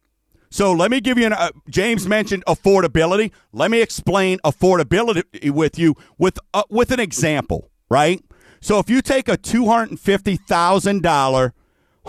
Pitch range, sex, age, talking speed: 160-225 Hz, male, 50-69, 140 wpm